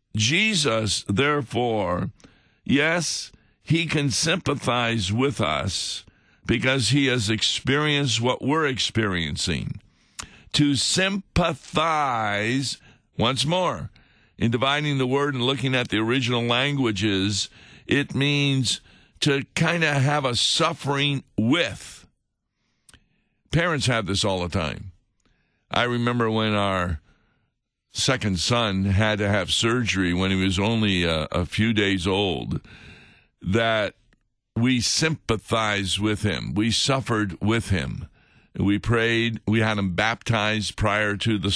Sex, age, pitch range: male, 60-79, 100-130 Hz